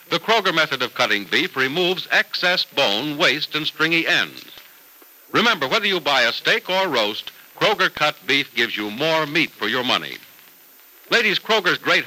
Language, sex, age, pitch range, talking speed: English, male, 60-79, 145-185 Hz, 170 wpm